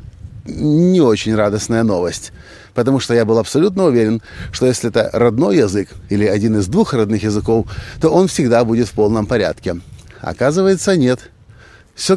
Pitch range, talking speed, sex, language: 100-130 Hz, 155 wpm, male, Russian